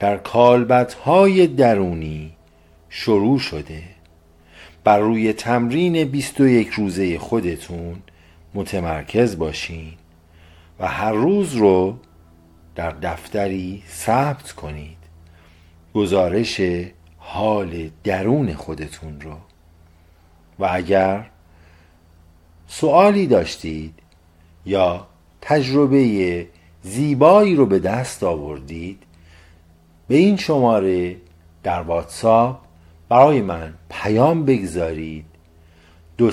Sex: male